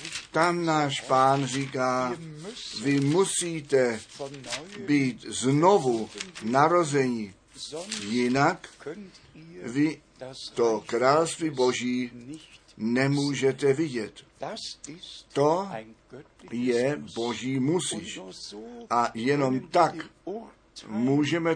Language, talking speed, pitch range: Czech, 65 wpm, 125-155 Hz